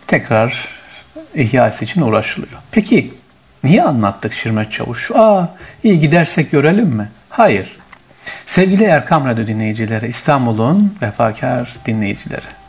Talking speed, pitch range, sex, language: 105 wpm, 115-180 Hz, male, Turkish